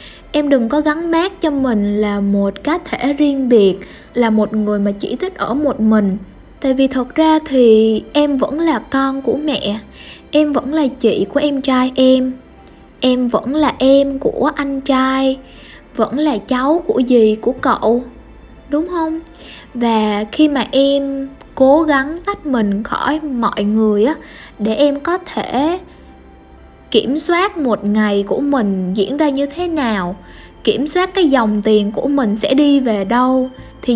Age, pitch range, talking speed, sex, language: 10-29, 215-290 Hz, 170 wpm, female, Vietnamese